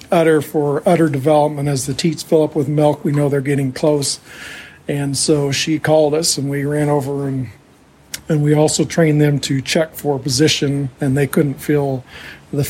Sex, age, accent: male, 50-69, American